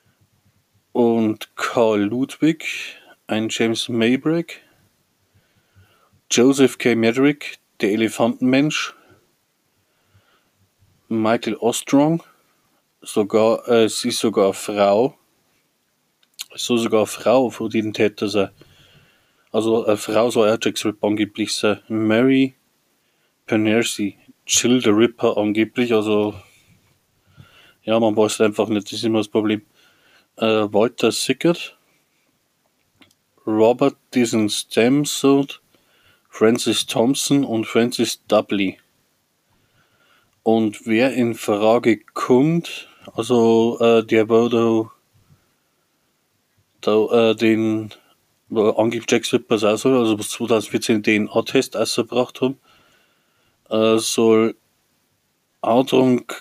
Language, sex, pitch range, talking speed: German, male, 105-120 Hz, 95 wpm